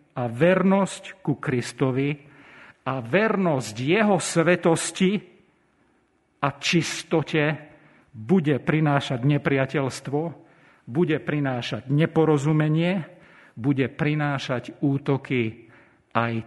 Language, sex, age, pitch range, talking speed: Slovak, male, 50-69, 130-165 Hz, 75 wpm